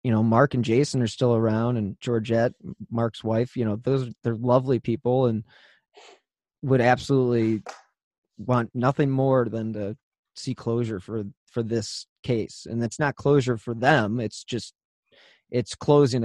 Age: 30-49